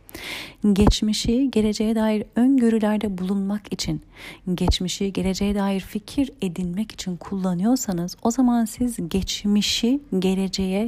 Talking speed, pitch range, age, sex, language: 100 wpm, 130-210 Hz, 40-59, female, Turkish